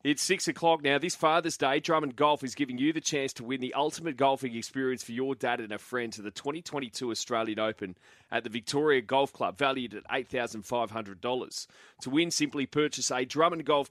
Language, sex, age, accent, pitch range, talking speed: English, male, 30-49, Australian, 115-145 Hz, 200 wpm